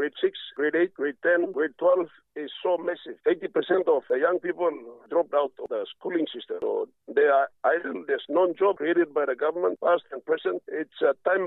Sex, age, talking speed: male, 50-69, 200 wpm